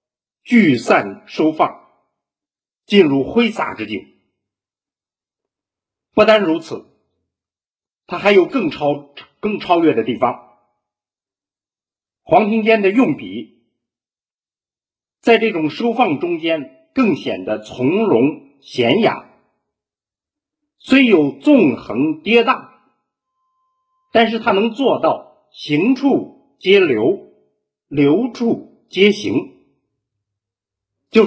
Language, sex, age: Chinese, male, 50-69